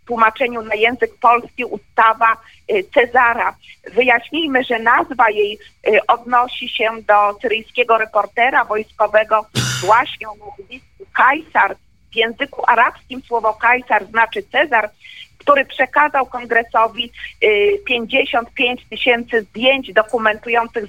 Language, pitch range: Polish, 220-255 Hz